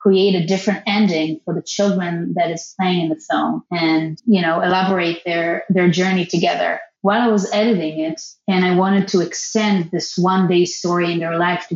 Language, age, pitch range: English, 30-49, 175-215 Hz